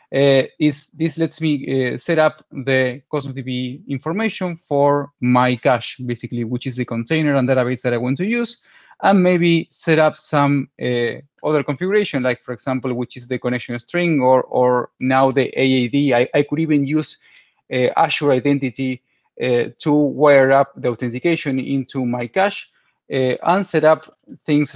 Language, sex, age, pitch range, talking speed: English, male, 20-39, 130-160 Hz, 170 wpm